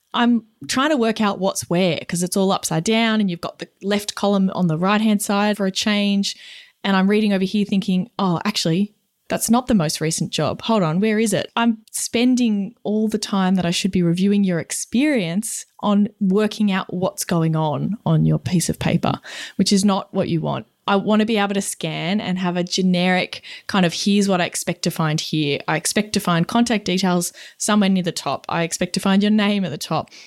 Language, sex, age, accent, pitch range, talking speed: English, female, 20-39, Australian, 175-210 Hz, 220 wpm